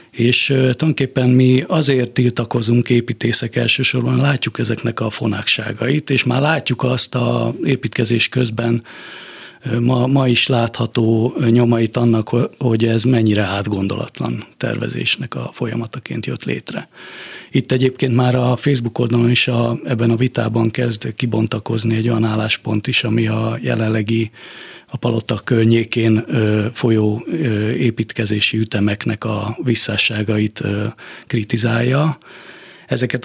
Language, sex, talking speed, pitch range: Hungarian, male, 115 wpm, 110-125 Hz